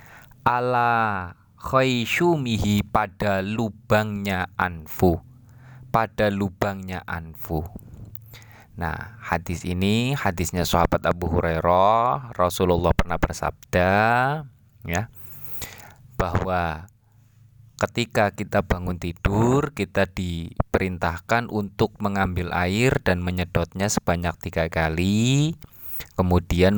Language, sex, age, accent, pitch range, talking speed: Indonesian, male, 20-39, native, 90-115 Hz, 80 wpm